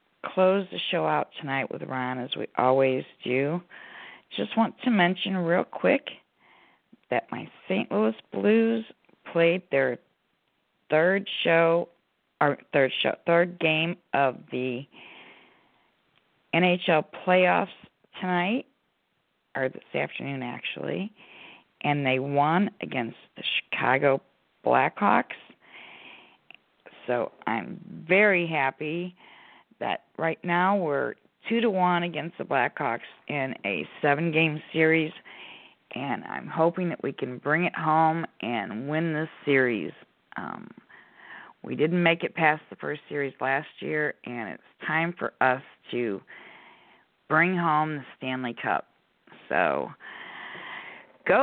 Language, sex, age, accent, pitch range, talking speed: English, female, 50-69, American, 140-180 Hz, 120 wpm